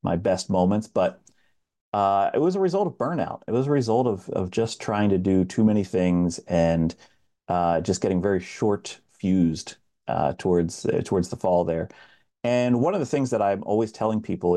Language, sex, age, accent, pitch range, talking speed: English, male, 40-59, American, 95-120 Hz, 200 wpm